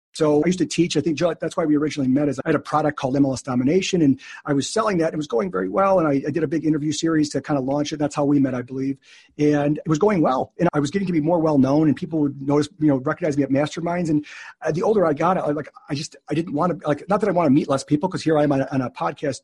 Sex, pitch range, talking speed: male, 140-170 Hz, 315 wpm